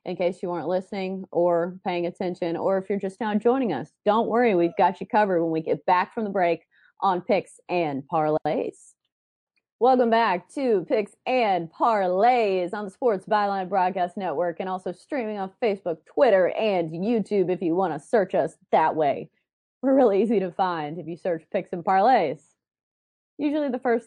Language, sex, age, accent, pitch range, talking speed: English, female, 30-49, American, 170-215 Hz, 185 wpm